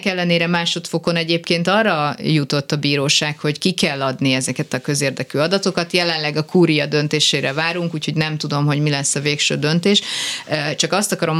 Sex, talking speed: female, 170 wpm